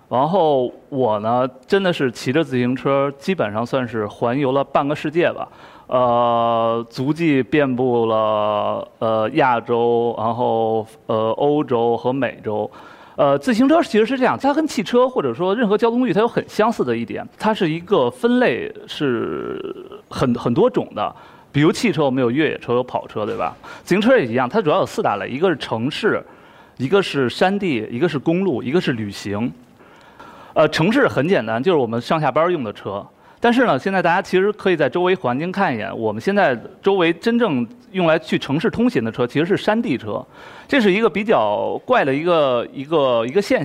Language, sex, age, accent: Chinese, male, 30-49, native